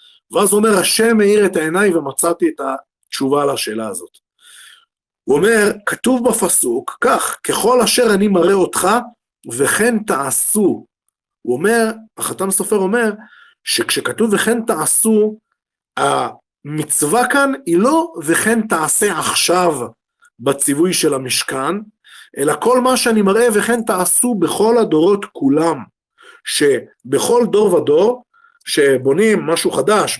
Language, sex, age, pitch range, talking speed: Hebrew, male, 50-69, 170-245 Hz, 115 wpm